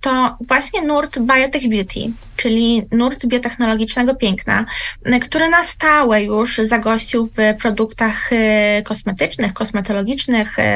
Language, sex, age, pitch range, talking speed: Polish, female, 20-39, 220-275 Hz, 100 wpm